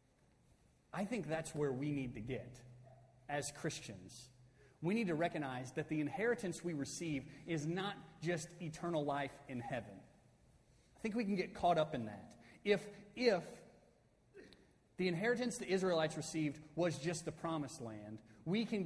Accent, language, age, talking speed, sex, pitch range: American, English, 30-49, 155 wpm, male, 145-205 Hz